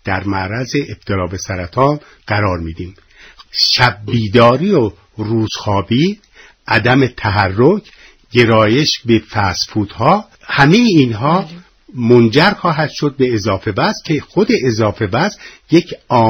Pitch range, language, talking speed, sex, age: 105-135 Hz, Persian, 100 wpm, male, 60-79